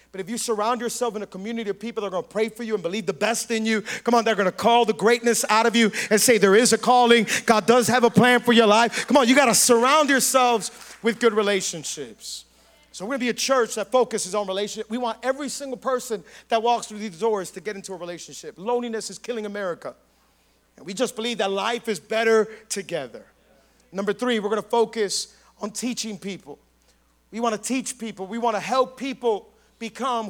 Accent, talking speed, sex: American, 230 wpm, male